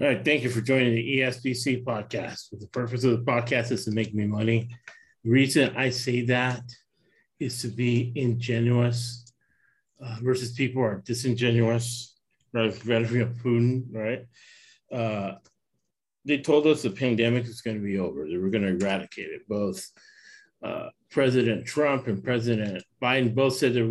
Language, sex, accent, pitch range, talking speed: English, male, American, 115-135 Hz, 170 wpm